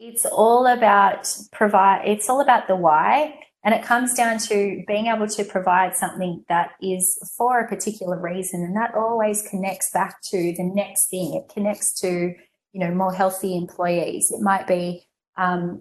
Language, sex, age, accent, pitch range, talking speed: English, female, 20-39, Australian, 175-195 Hz, 175 wpm